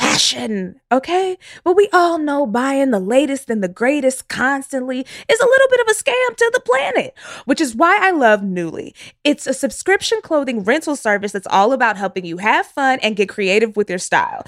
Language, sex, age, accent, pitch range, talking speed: English, female, 20-39, American, 210-335 Hz, 200 wpm